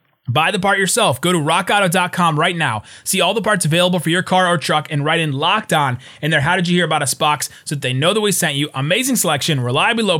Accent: American